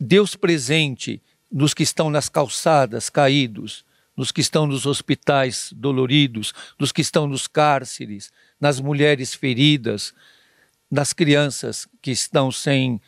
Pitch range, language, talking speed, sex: 135-170 Hz, Portuguese, 125 wpm, male